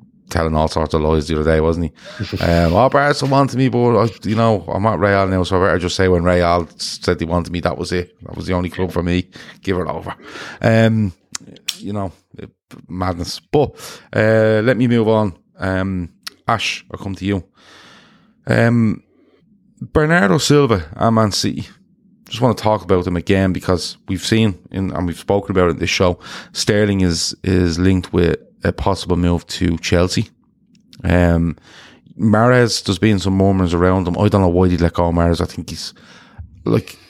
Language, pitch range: English, 85-110 Hz